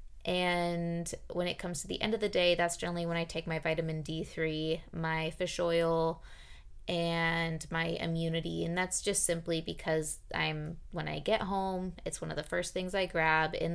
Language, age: English, 20-39